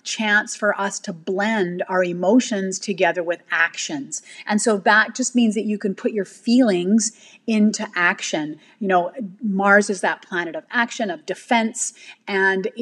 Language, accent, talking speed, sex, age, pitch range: English, American, 160 wpm, female, 40-59, 195-245 Hz